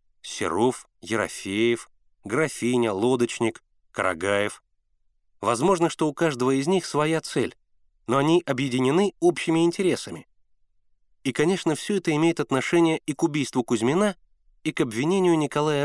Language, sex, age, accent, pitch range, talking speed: Russian, male, 30-49, native, 115-165 Hz, 120 wpm